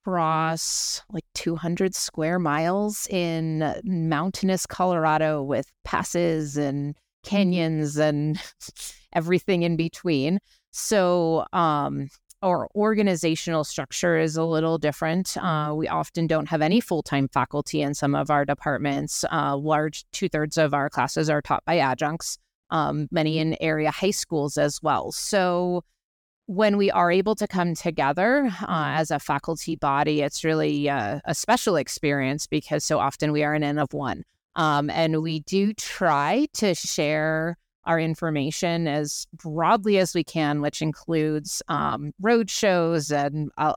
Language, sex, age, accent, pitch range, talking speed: English, female, 30-49, American, 150-175 Hz, 145 wpm